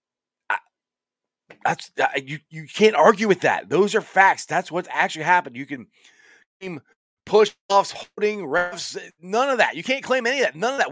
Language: English